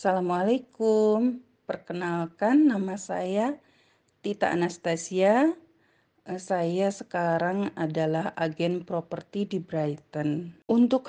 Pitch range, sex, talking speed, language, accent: 160-205 Hz, female, 75 wpm, Indonesian, native